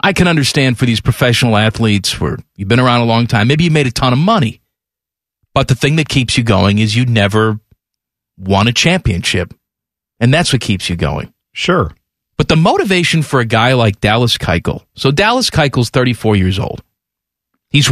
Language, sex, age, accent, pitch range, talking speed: English, male, 40-59, American, 115-160 Hz, 190 wpm